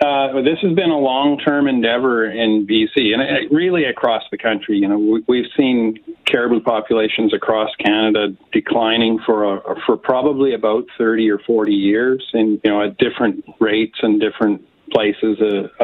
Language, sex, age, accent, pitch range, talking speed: English, male, 50-69, American, 105-125 Hz, 165 wpm